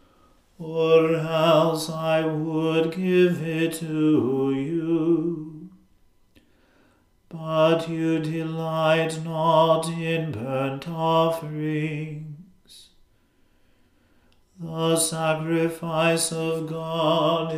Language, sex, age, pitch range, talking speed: English, male, 40-59, 160-165 Hz, 65 wpm